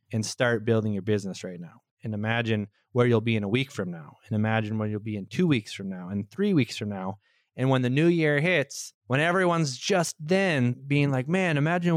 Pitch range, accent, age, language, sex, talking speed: 110-135 Hz, American, 20-39, English, male, 230 wpm